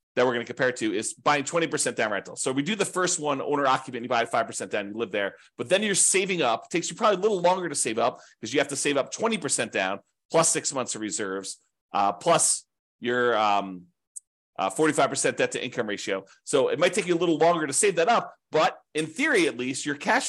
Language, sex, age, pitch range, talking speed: English, male, 30-49, 120-190 Hz, 255 wpm